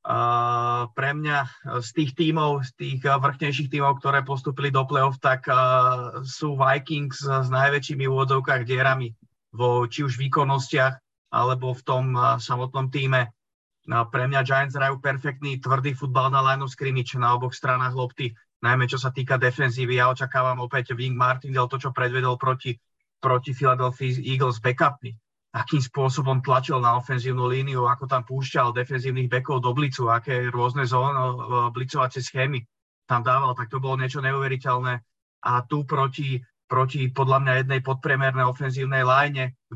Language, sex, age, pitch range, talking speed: Czech, male, 30-49, 125-135 Hz, 150 wpm